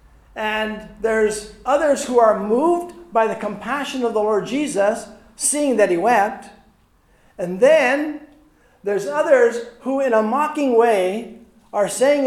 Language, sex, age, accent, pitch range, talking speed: English, male, 50-69, American, 160-240 Hz, 135 wpm